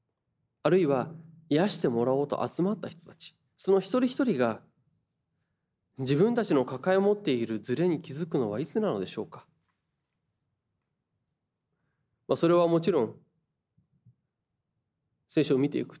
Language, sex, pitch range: Japanese, male, 130-175 Hz